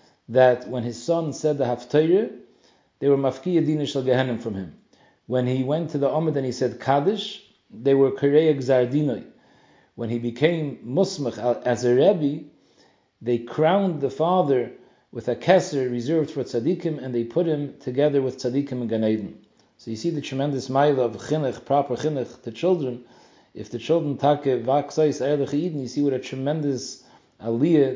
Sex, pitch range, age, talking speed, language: male, 125-155 Hz, 40-59, 165 wpm, English